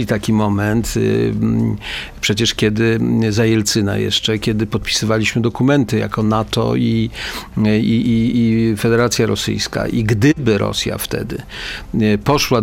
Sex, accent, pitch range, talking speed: male, native, 110-130 Hz, 90 wpm